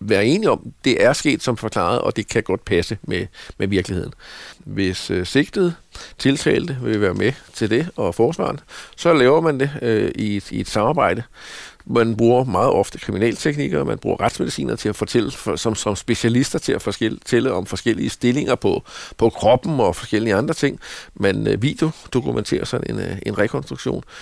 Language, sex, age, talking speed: Danish, male, 60-79, 185 wpm